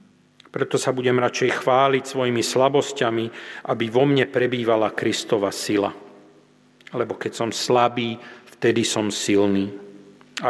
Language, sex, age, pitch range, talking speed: Slovak, male, 50-69, 110-135 Hz, 120 wpm